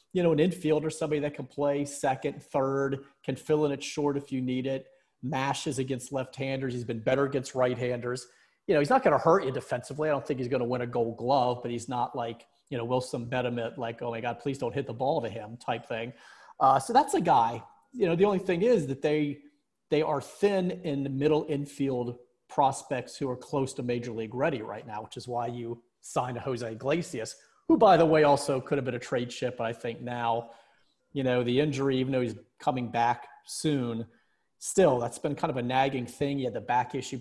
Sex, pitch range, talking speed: male, 120-140 Hz, 235 wpm